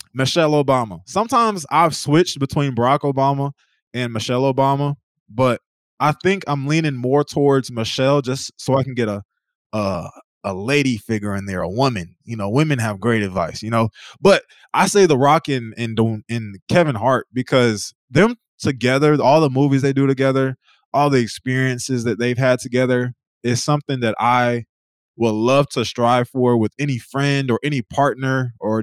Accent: American